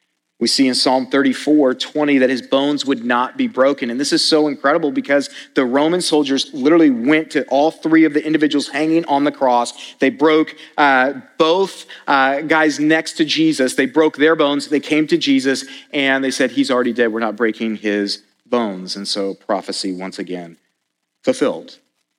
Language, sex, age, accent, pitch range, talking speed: English, male, 40-59, American, 105-140 Hz, 185 wpm